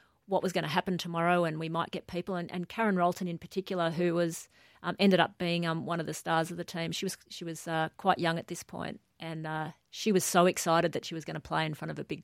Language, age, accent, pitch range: English, 40-59, Australian, 160-180 Hz